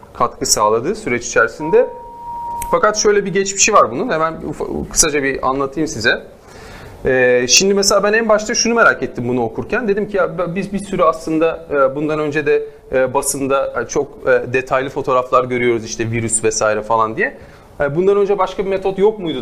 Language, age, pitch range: Turkish, 40-59, 135-225 Hz